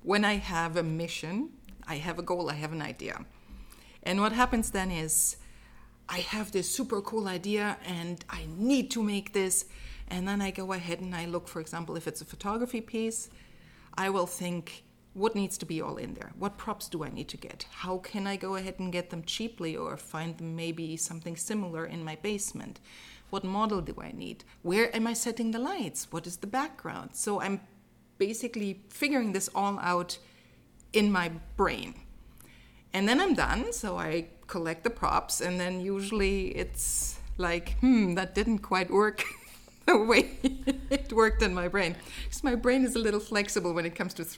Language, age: English, 30-49